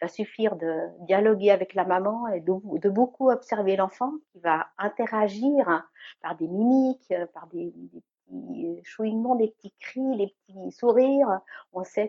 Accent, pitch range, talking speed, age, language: French, 165-205 Hz, 165 wpm, 60-79, French